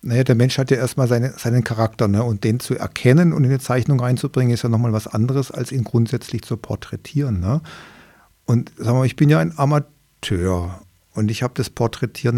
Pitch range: 105-130 Hz